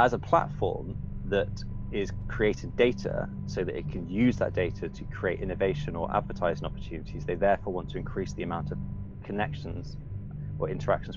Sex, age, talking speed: male, 20-39, 165 wpm